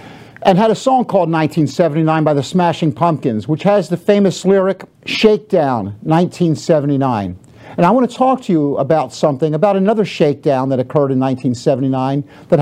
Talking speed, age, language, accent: 160 wpm, 50-69, English, American